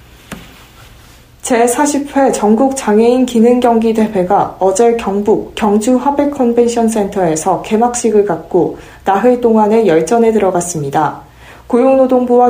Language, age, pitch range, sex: Korean, 40-59, 195-245 Hz, female